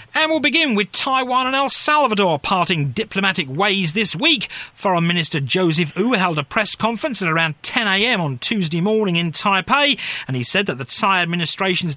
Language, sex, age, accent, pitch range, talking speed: English, male, 40-59, British, 170-230 Hz, 180 wpm